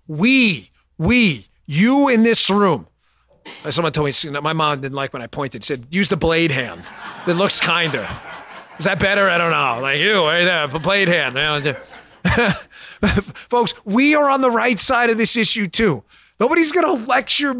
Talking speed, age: 175 wpm, 30-49